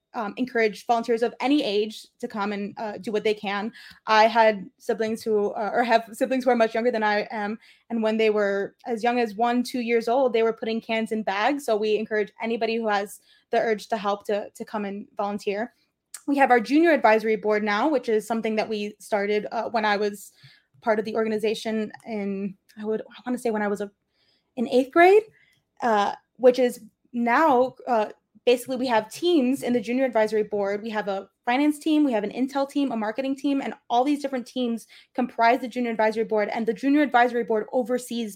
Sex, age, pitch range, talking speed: female, 20-39, 215-250 Hz, 215 wpm